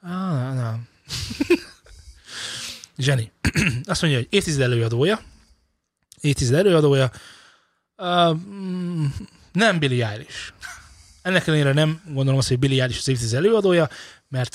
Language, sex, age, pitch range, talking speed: Hungarian, male, 20-39, 115-150 Hz, 110 wpm